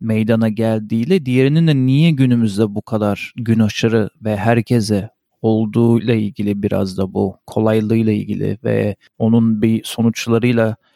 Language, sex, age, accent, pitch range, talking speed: Turkish, male, 40-59, native, 110-130 Hz, 125 wpm